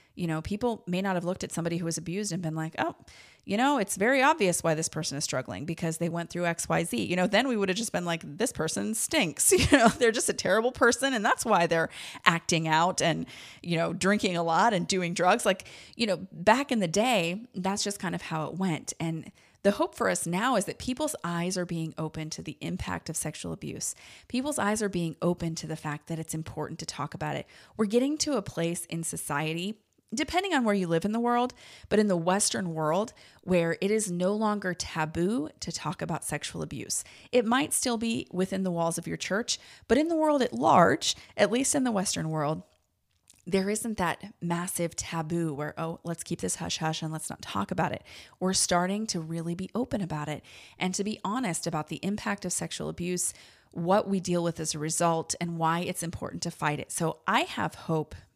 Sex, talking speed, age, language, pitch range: female, 230 wpm, 30-49, English, 165-210 Hz